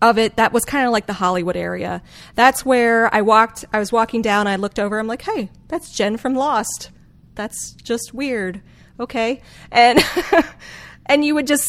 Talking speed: 190 wpm